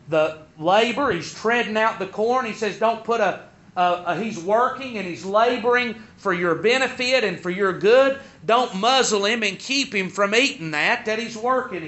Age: 40-59